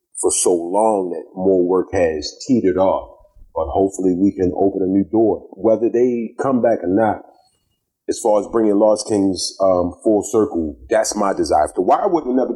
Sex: male